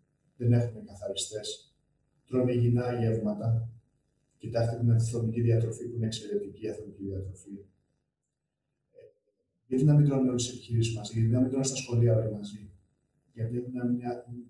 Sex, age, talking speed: male, 30-49, 145 wpm